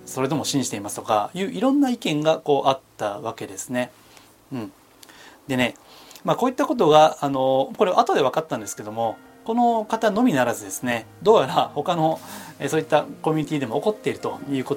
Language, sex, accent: Japanese, male, native